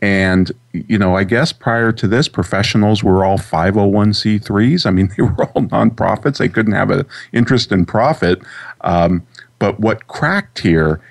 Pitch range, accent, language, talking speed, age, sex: 85-110 Hz, American, English, 160 wpm, 40-59, male